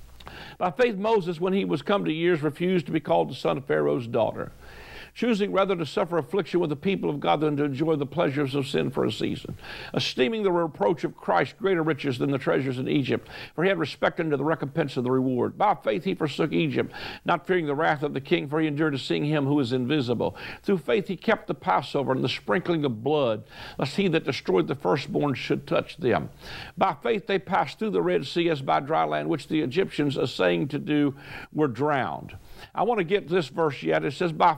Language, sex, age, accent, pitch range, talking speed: English, male, 60-79, American, 145-185 Hz, 225 wpm